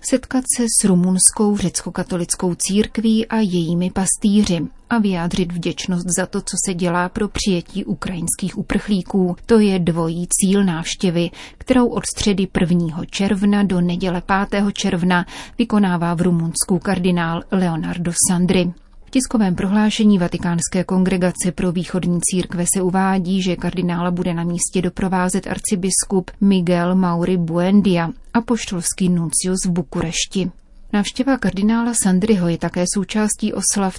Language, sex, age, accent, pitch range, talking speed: Czech, female, 30-49, native, 175-200 Hz, 130 wpm